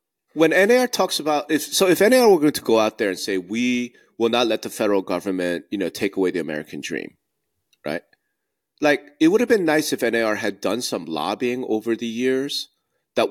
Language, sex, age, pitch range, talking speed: English, male, 30-49, 105-140 Hz, 210 wpm